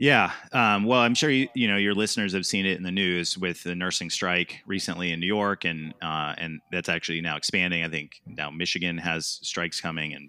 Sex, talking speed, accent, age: male, 225 wpm, American, 30-49